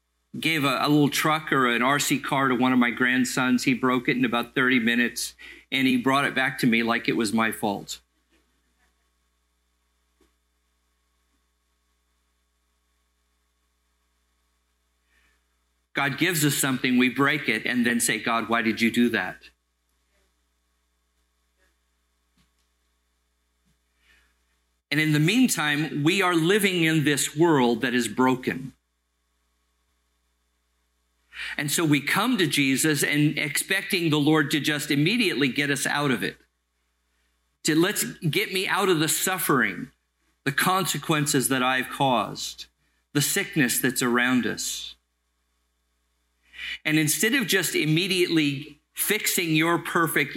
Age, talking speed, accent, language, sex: 50-69, 125 wpm, American, English, male